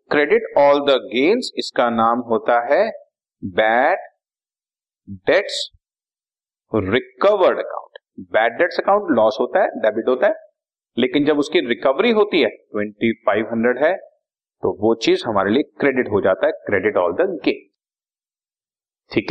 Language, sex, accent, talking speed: Hindi, male, native, 135 wpm